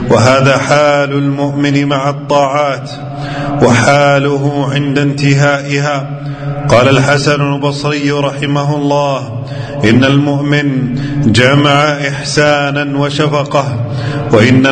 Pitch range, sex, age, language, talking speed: 130-150 Hz, male, 40-59, Arabic, 75 wpm